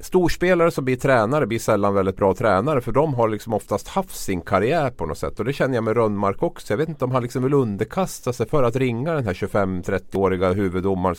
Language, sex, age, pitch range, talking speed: Swedish, male, 30-49, 90-120 Hz, 230 wpm